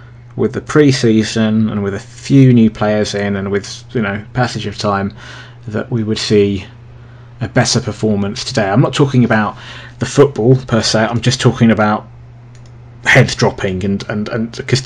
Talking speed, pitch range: 160 wpm, 110-125 Hz